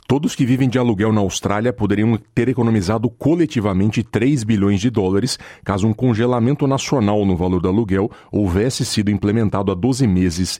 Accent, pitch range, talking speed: Brazilian, 95-120 Hz, 165 wpm